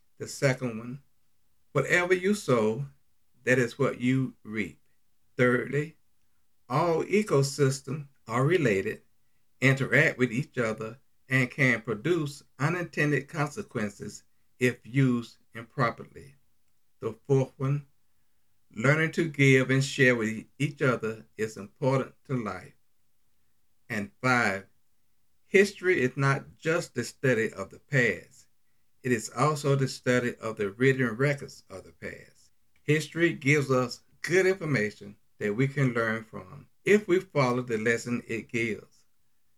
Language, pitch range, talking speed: English, 115-140 Hz, 125 wpm